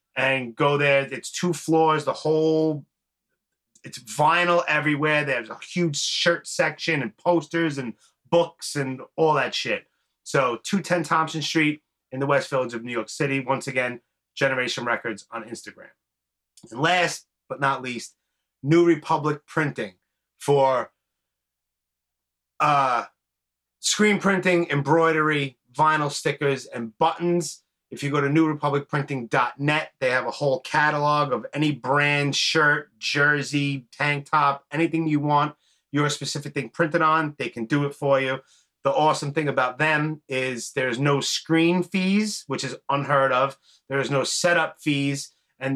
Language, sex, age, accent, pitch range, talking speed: English, male, 30-49, American, 135-160 Hz, 145 wpm